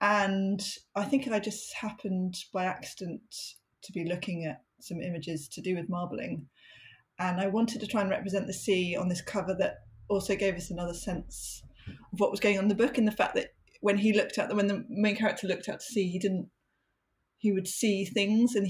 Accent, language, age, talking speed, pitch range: British, English, 20-39, 220 wpm, 180-205 Hz